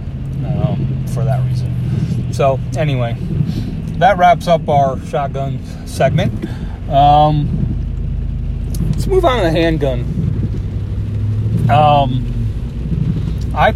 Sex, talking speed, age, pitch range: male, 90 wpm, 30-49, 115-140 Hz